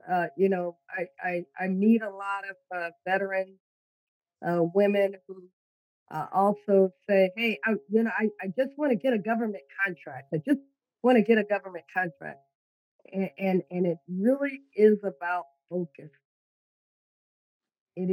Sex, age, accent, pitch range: female, 50-69, American, 180-230 Hz